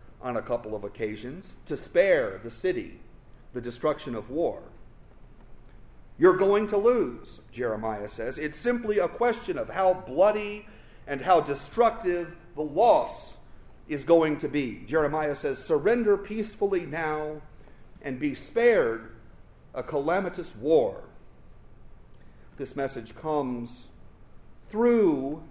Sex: male